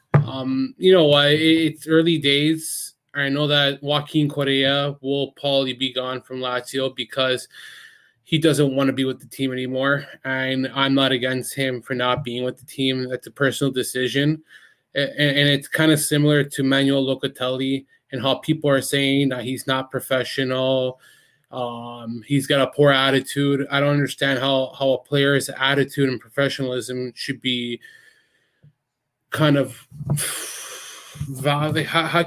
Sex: male